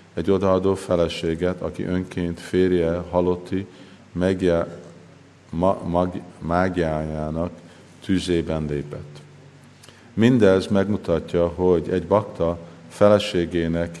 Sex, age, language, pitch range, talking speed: male, 50-69, Hungarian, 85-95 Hz, 75 wpm